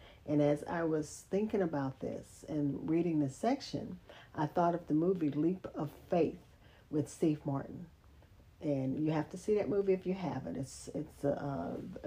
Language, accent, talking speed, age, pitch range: English, American, 175 wpm, 40-59, 145-190 Hz